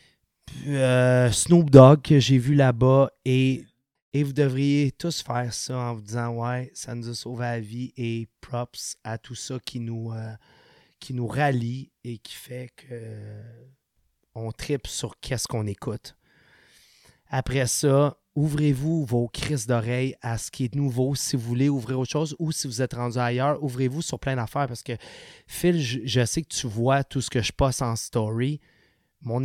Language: French